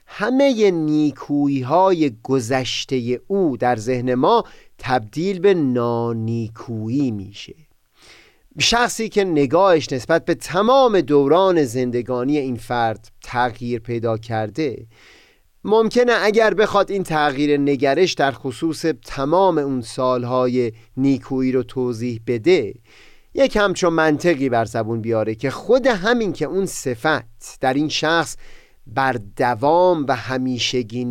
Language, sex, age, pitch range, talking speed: Persian, male, 30-49, 125-175 Hz, 115 wpm